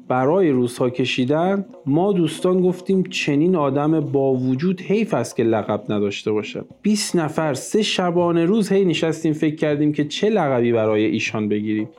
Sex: male